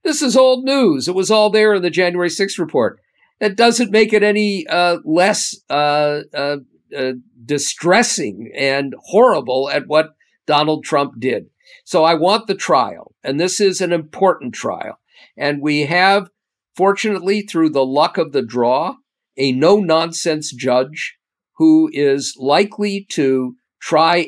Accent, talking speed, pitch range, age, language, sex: American, 150 wpm, 130-195 Hz, 50-69, English, male